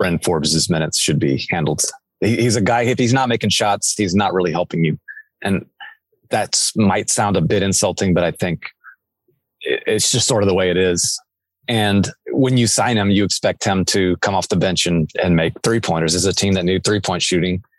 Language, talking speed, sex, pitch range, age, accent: English, 205 wpm, male, 95-115 Hz, 30-49, American